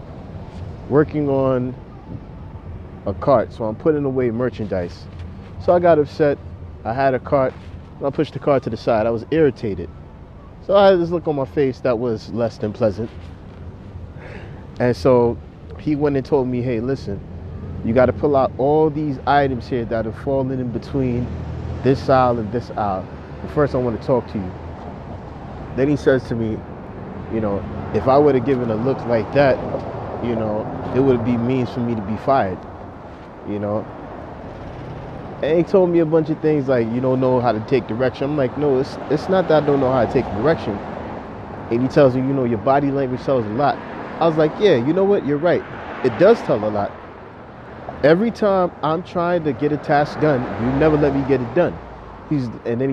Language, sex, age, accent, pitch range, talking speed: English, male, 30-49, American, 105-140 Hz, 205 wpm